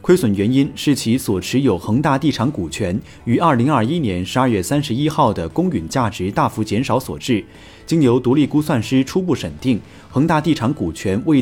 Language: Chinese